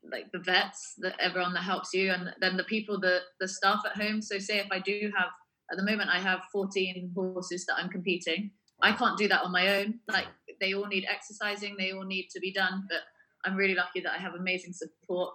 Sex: female